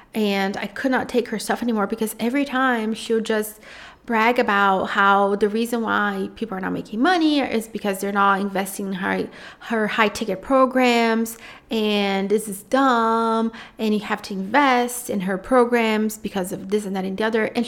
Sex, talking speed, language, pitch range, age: female, 185 wpm, English, 205-250 Hz, 30-49